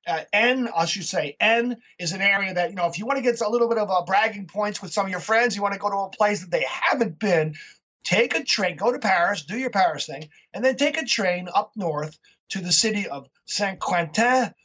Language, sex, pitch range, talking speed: English, male, 170-225 Hz, 255 wpm